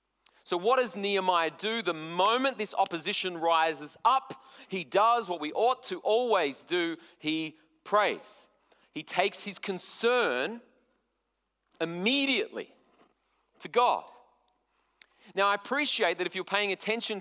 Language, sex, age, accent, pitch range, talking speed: English, male, 40-59, Australian, 170-225 Hz, 125 wpm